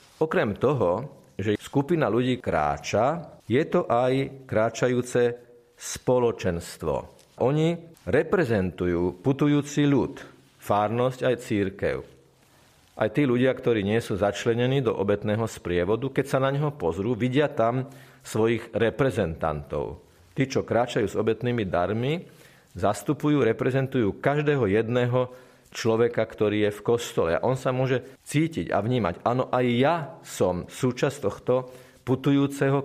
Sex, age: male, 40-59